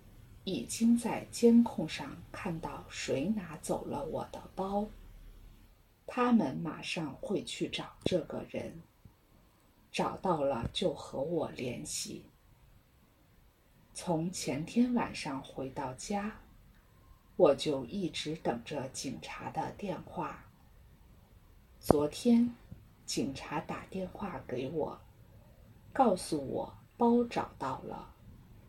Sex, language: female, English